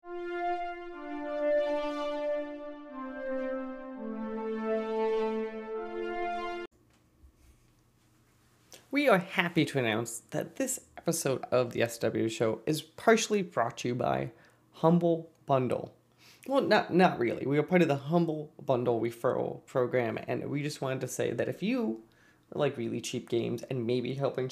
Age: 20-39